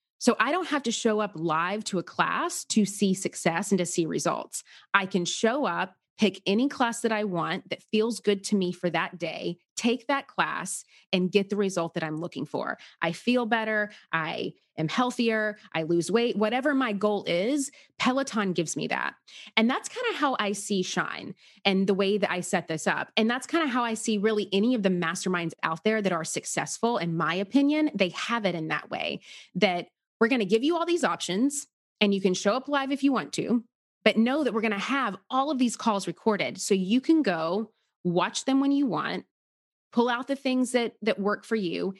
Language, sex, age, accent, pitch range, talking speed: English, female, 30-49, American, 185-245 Hz, 220 wpm